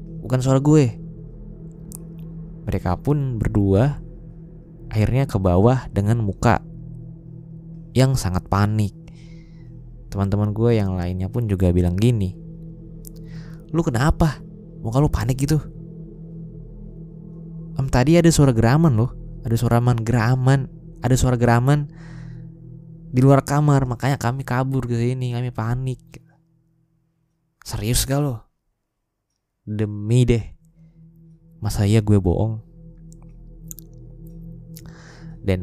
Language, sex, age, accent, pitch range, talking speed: Indonesian, male, 20-39, native, 110-160 Hz, 100 wpm